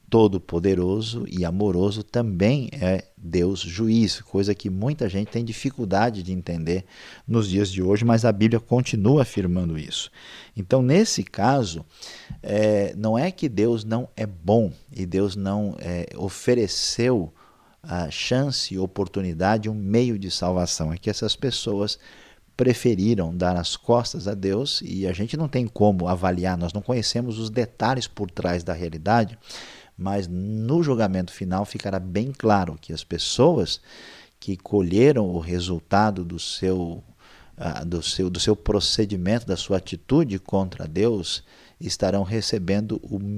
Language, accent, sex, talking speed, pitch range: Portuguese, Brazilian, male, 135 wpm, 90-115 Hz